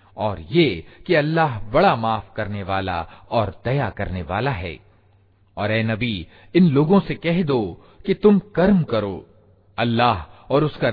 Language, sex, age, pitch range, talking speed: Hindi, male, 40-59, 100-140 Hz, 145 wpm